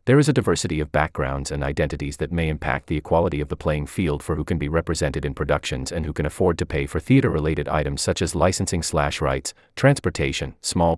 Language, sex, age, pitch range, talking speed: English, male, 30-49, 75-115 Hz, 220 wpm